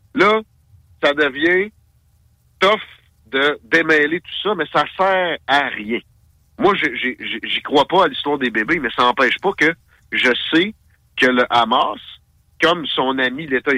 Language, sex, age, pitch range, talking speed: French, male, 60-79, 120-175 Hz, 155 wpm